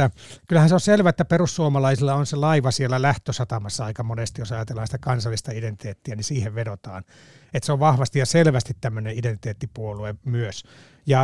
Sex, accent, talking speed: male, native, 170 wpm